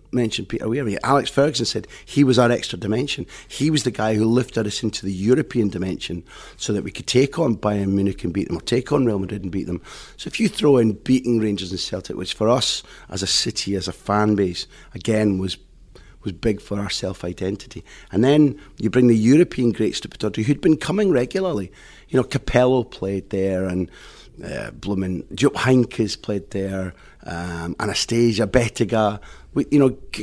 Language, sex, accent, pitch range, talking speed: English, male, British, 95-120 Hz, 195 wpm